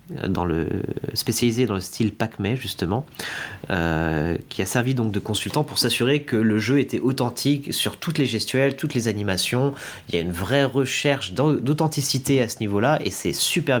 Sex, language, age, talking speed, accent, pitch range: male, French, 30-49, 190 wpm, French, 95-135 Hz